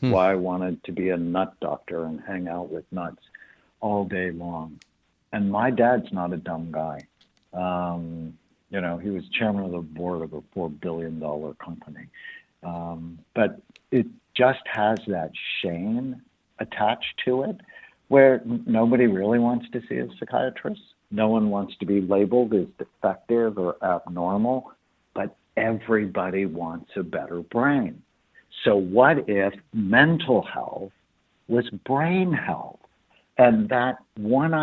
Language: English